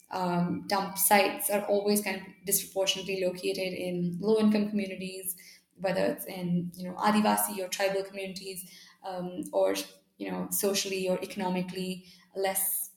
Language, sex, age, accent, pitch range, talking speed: English, female, 10-29, Indian, 185-205 Hz, 135 wpm